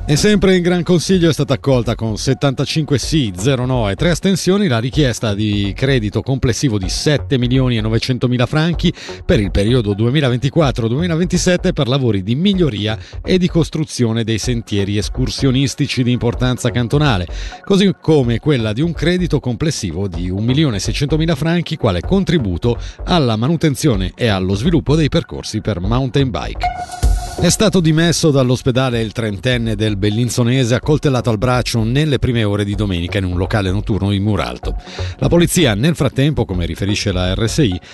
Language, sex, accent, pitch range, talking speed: Italian, male, native, 105-150 Hz, 160 wpm